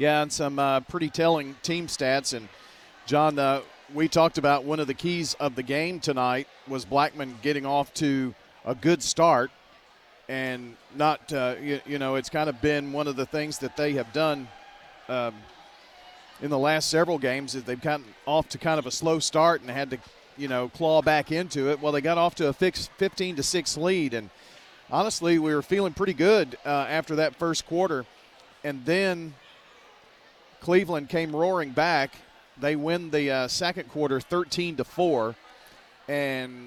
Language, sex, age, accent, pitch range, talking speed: English, male, 40-59, American, 135-165 Hz, 180 wpm